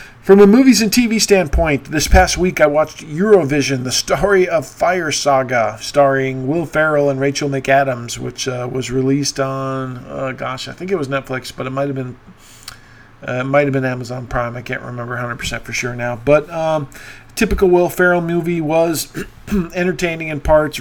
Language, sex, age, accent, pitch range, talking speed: English, male, 40-59, American, 130-150 Hz, 180 wpm